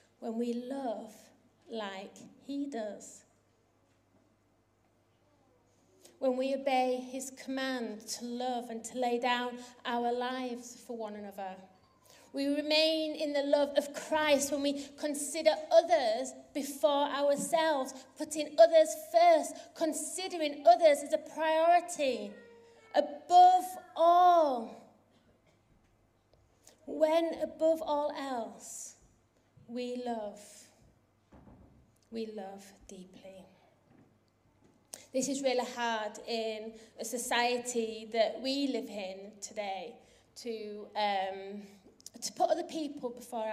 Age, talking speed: 30-49, 100 wpm